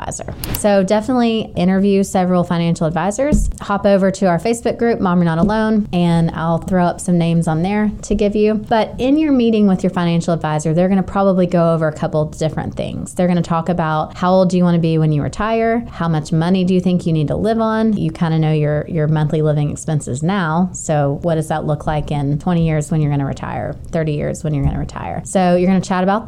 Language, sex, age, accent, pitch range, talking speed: English, female, 20-39, American, 155-195 Hz, 235 wpm